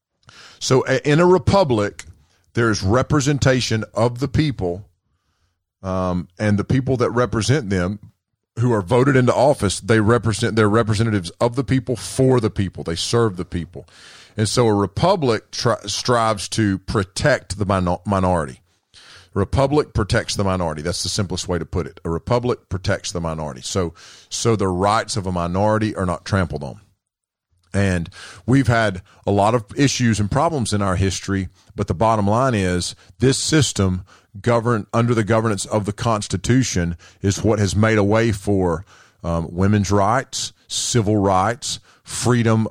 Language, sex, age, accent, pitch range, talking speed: English, male, 40-59, American, 90-115 Hz, 160 wpm